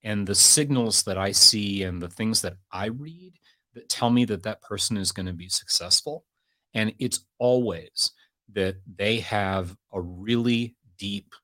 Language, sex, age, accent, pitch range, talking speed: English, male, 30-49, American, 95-120 Hz, 170 wpm